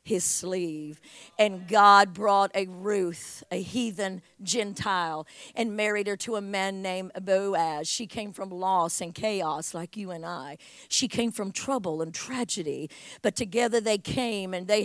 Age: 50-69